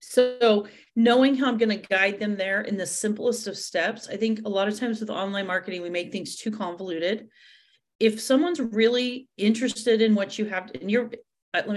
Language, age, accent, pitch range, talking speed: English, 40-59, American, 185-230 Hz, 200 wpm